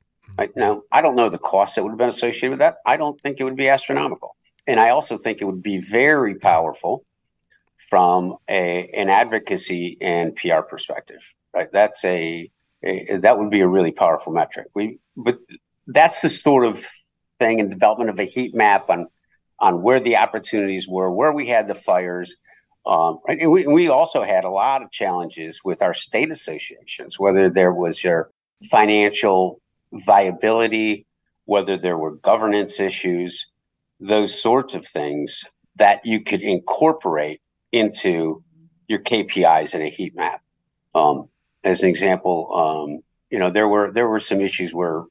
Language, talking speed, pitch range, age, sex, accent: English, 170 wpm, 90-110 Hz, 50-69, male, American